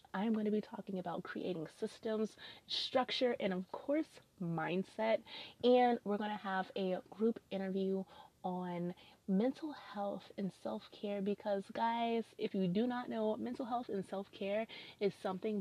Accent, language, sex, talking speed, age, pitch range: American, English, female, 150 wpm, 20-39, 185-230 Hz